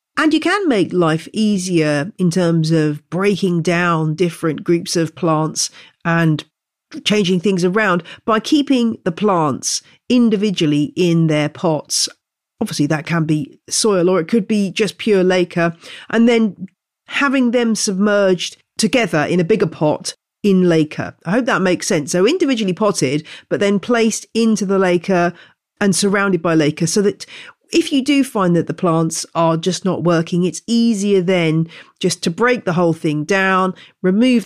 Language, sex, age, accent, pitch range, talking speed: English, female, 40-59, British, 160-205 Hz, 160 wpm